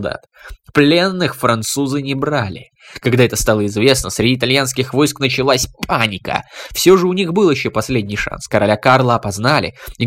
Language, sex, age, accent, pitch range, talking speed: Russian, male, 20-39, native, 115-155 Hz, 155 wpm